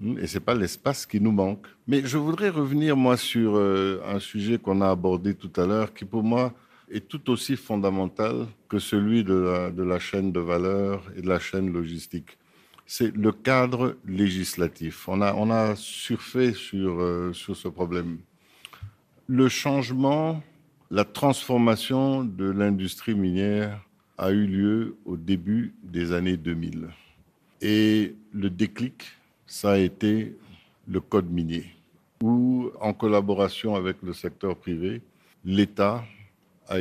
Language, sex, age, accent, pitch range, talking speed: French, male, 50-69, French, 90-110 Hz, 145 wpm